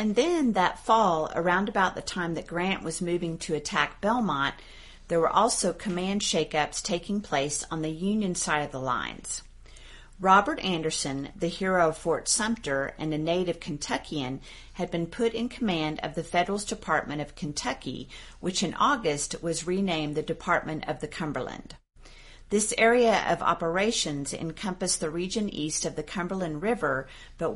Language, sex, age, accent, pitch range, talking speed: English, female, 40-59, American, 155-205 Hz, 160 wpm